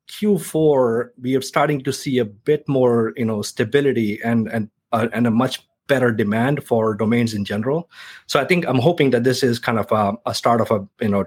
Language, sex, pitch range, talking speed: English, male, 105-125 Hz, 220 wpm